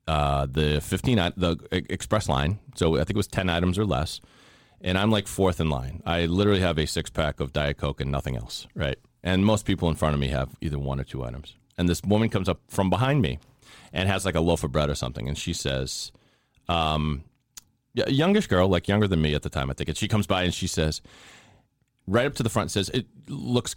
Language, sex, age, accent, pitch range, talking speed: English, male, 30-49, American, 85-120 Hz, 235 wpm